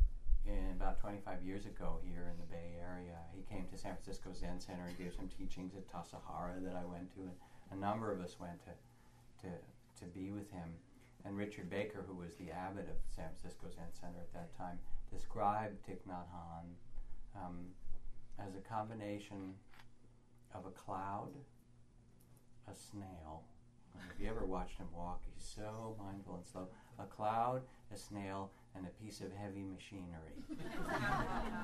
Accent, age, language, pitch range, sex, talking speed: American, 40-59, English, 85-110 Hz, male, 170 wpm